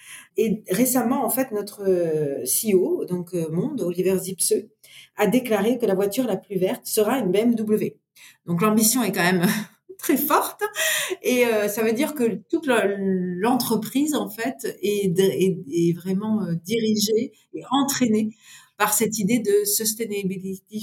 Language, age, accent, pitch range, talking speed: French, 40-59, French, 180-220 Hz, 135 wpm